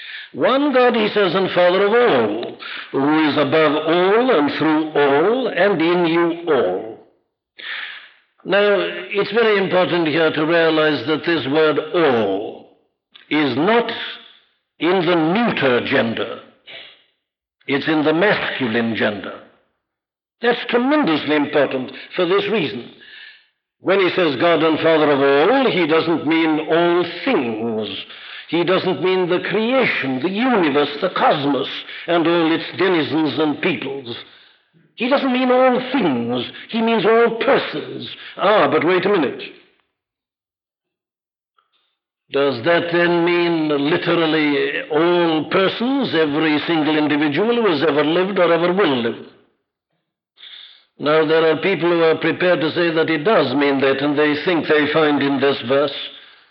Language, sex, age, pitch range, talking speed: English, male, 60-79, 155-210 Hz, 135 wpm